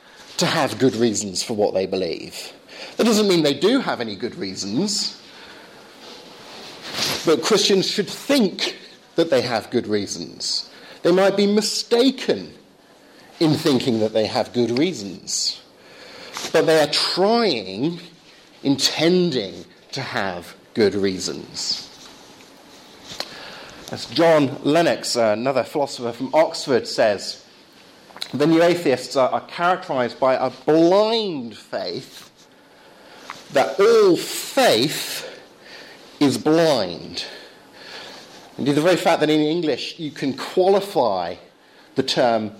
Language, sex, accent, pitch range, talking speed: English, male, British, 120-180 Hz, 115 wpm